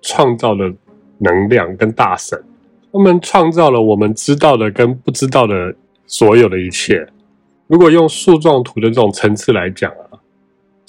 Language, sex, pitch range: Chinese, male, 100-135 Hz